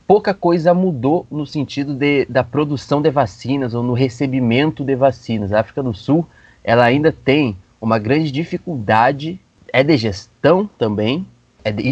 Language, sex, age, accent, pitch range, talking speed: Portuguese, male, 20-39, Brazilian, 110-140 Hz, 155 wpm